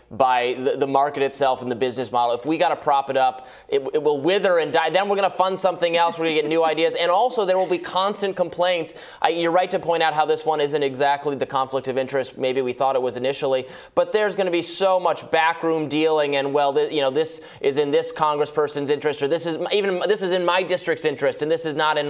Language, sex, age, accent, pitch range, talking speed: English, male, 20-39, American, 125-170 Hz, 260 wpm